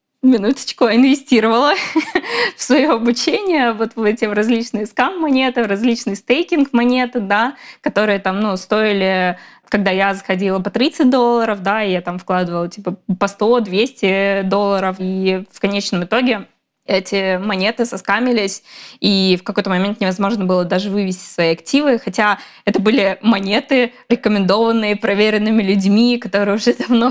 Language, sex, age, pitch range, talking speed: Russian, female, 20-39, 195-245 Hz, 135 wpm